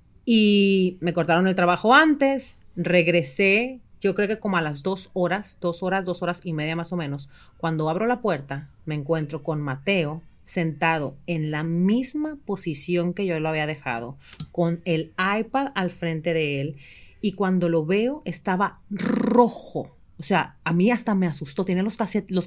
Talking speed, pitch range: 175 wpm, 170-230 Hz